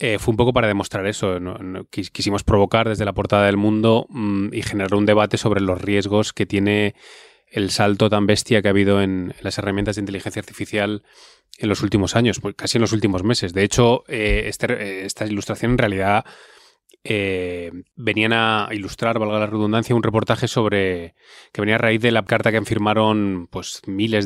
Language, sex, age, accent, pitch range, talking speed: Spanish, male, 20-39, Spanish, 100-110 Hz, 190 wpm